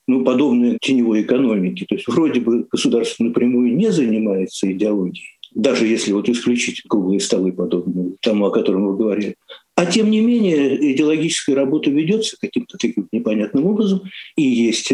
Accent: native